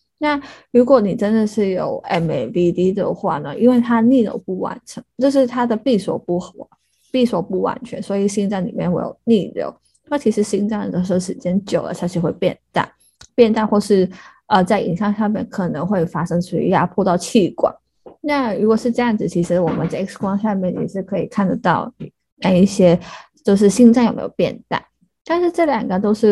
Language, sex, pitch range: Chinese, female, 185-230 Hz